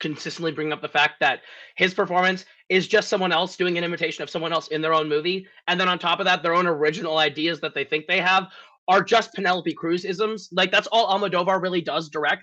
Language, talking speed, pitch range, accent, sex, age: English, 230 wpm, 165-220 Hz, American, male, 20-39